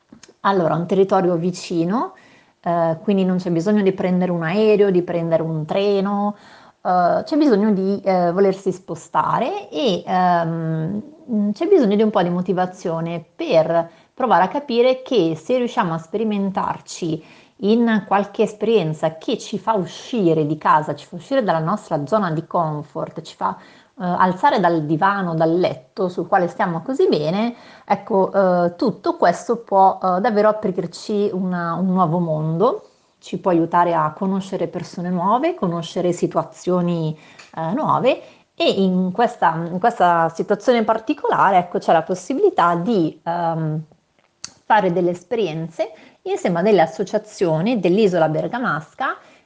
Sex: female